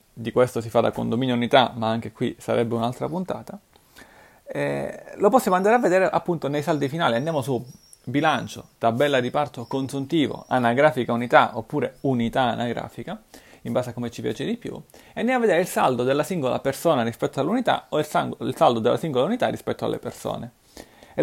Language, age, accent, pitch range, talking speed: Italian, 30-49, native, 115-150 Hz, 185 wpm